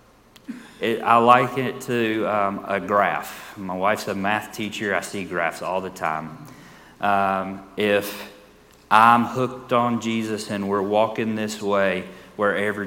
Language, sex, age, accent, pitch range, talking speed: English, male, 30-49, American, 90-115 Hz, 140 wpm